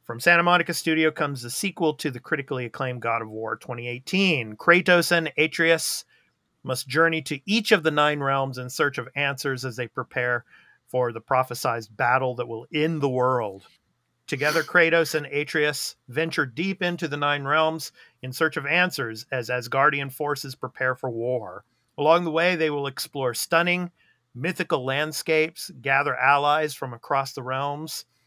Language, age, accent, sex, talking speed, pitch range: English, 40-59, American, male, 165 wpm, 125-160 Hz